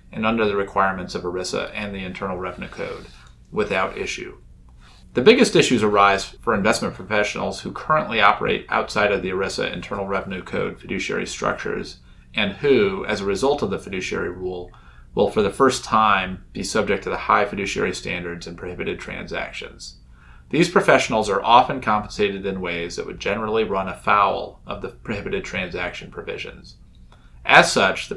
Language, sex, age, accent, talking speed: English, male, 30-49, American, 160 wpm